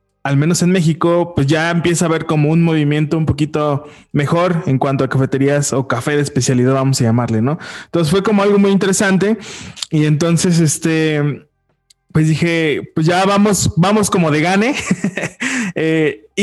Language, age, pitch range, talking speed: Spanish, 20-39, 140-180 Hz, 170 wpm